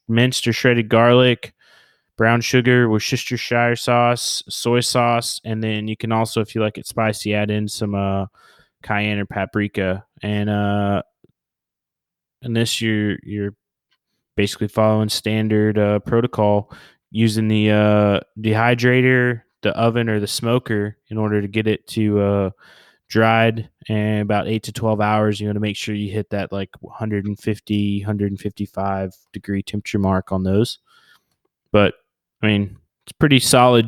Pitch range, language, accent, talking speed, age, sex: 100-115 Hz, English, American, 145 wpm, 20-39, male